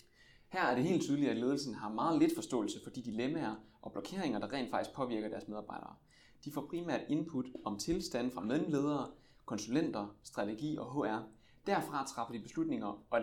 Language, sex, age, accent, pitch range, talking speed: Danish, male, 20-39, native, 105-150 Hz, 175 wpm